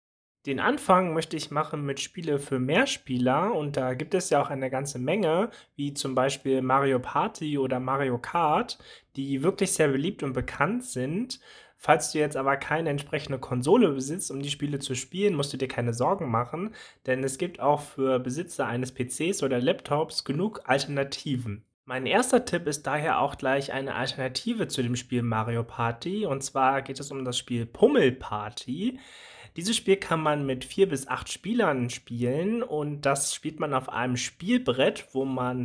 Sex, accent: male, German